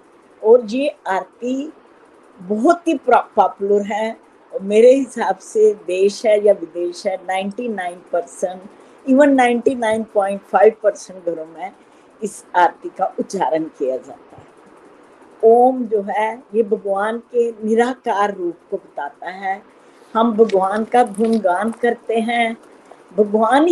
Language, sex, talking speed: Hindi, female, 120 wpm